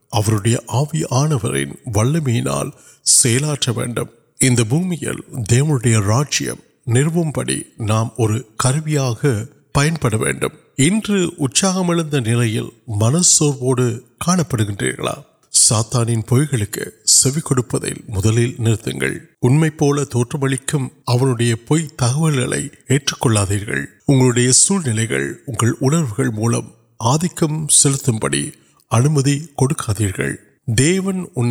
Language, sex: Urdu, male